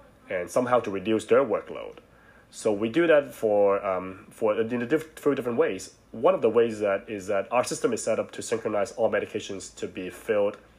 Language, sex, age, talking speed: English, male, 30-49, 210 wpm